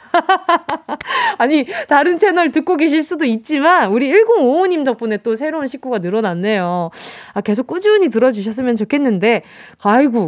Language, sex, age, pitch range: Korean, female, 20-39, 205-315 Hz